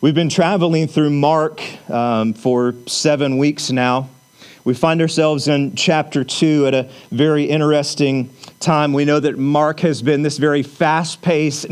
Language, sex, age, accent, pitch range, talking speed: English, male, 40-59, American, 130-150 Hz, 155 wpm